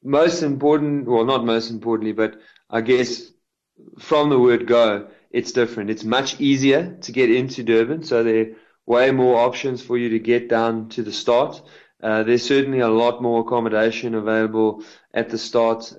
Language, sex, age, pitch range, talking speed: English, male, 20-39, 115-125 Hz, 175 wpm